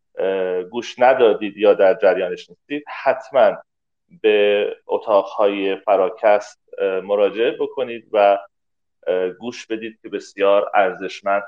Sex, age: male, 40-59